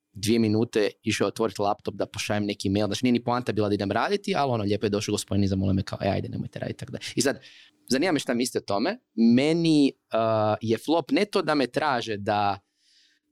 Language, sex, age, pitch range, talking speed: Croatian, male, 20-39, 105-135 Hz, 225 wpm